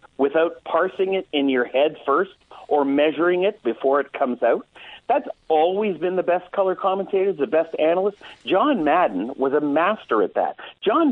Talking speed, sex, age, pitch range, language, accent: 175 wpm, male, 50-69, 150-220 Hz, English, American